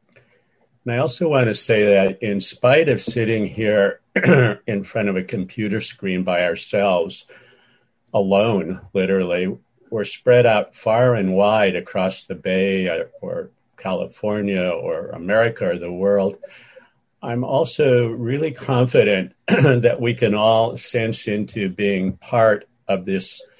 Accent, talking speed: American, 130 wpm